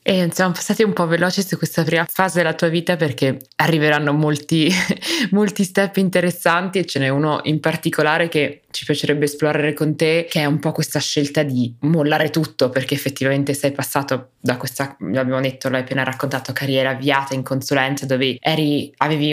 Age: 20-39